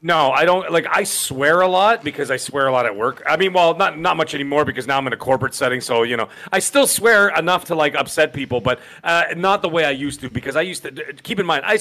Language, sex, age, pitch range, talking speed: English, male, 40-59, 130-180 Hz, 285 wpm